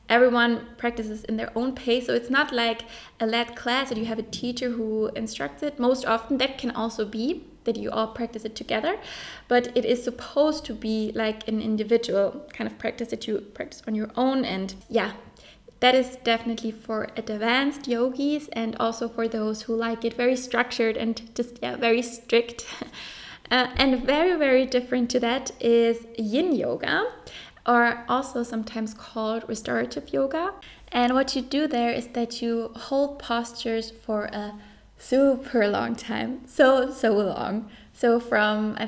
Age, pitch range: 20-39, 225-250 Hz